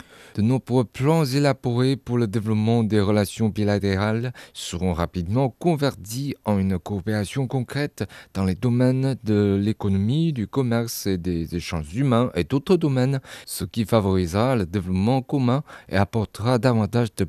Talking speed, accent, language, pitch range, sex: 140 wpm, French, French, 100-130 Hz, male